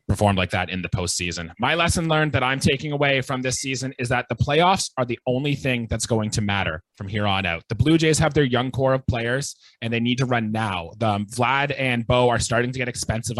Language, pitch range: English, 115-130 Hz